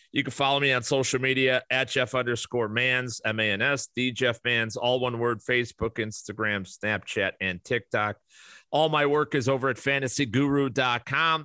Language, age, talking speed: English, 30-49, 160 wpm